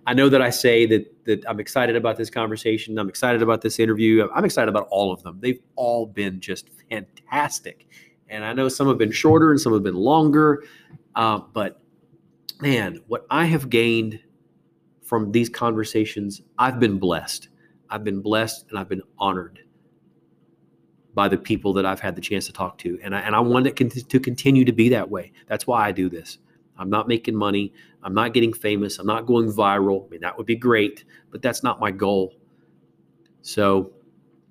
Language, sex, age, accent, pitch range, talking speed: English, male, 30-49, American, 90-115 Hz, 195 wpm